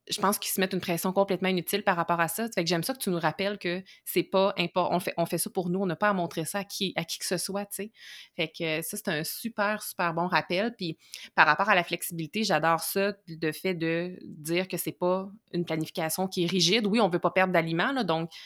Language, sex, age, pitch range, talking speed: French, female, 20-39, 165-200 Hz, 275 wpm